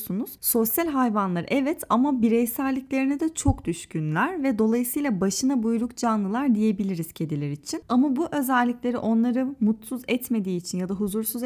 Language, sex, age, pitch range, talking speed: Turkish, female, 30-49, 200-255 Hz, 135 wpm